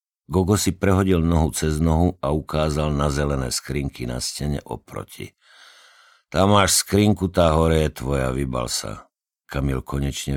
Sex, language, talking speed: male, Slovak, 145 wpm